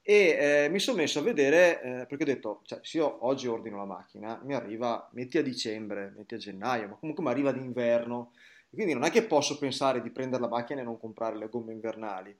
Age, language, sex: 20-39, Italian, male